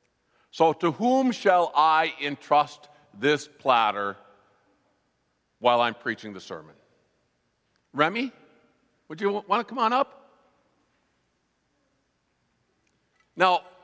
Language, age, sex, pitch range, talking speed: English, 50-69, male, 160-235 Hz, 95 wpm